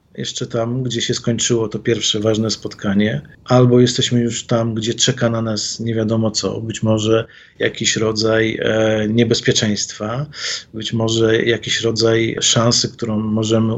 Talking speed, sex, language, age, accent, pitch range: 140 wpm, male, Polish, 40-59, native, 120-150 Hz